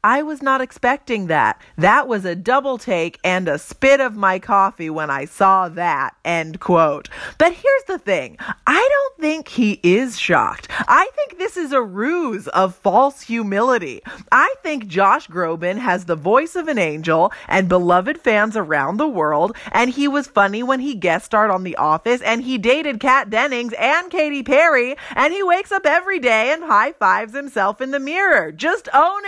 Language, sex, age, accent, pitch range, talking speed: English, female, 30-49, American, 195-290 Hz, 185 wpm